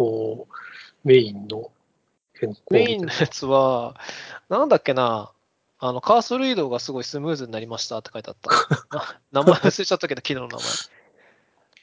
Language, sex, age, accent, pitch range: Japanese, male, 20-39, native, 120-180 Hz